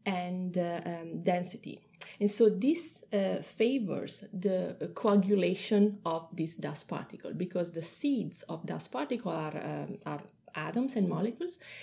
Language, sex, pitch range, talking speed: English, female, 185-250 Hz, 135 wpm